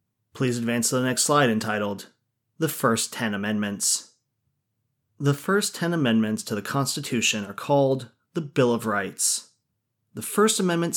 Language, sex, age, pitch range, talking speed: English, male, 30-49, 115-155 Hz, 150 wpm